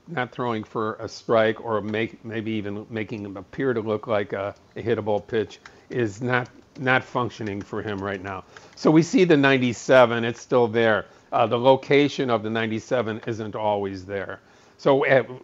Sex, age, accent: male, 50-69, American